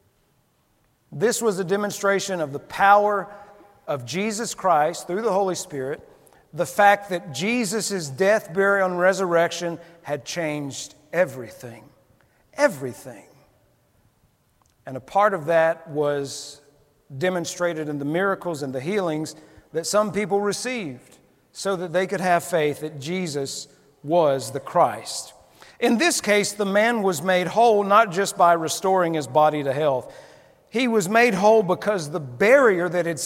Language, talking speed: English, 145 wpm